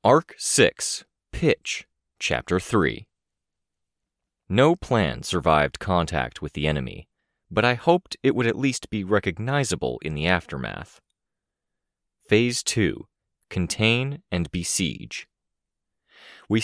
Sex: male